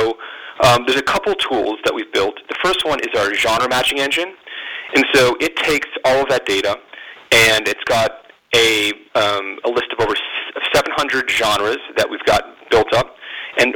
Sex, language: male, English